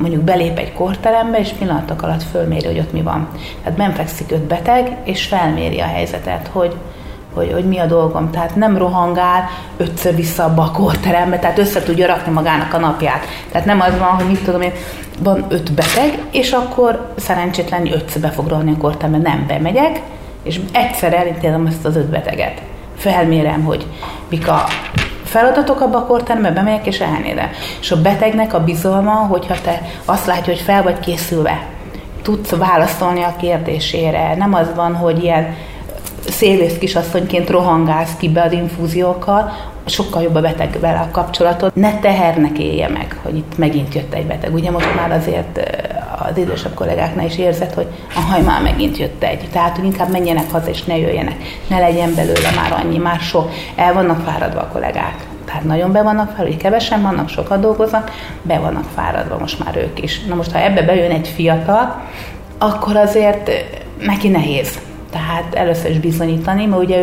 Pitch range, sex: 160-190 Hz, female